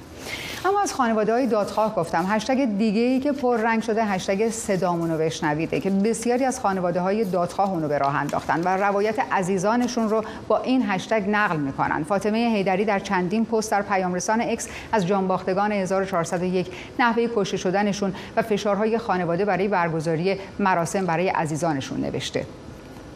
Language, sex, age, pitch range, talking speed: Persian, female, 30-49, 185-235 Hz, 140 wpm